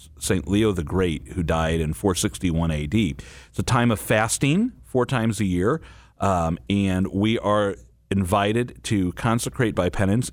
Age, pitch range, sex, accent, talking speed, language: 40-59, 90-115 Hz, male, American, 155 wpm, English